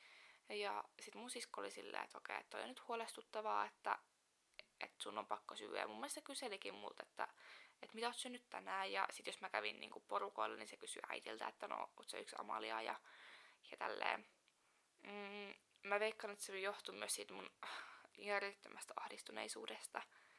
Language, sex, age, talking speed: Finnish, female, 20-39, 175 wpm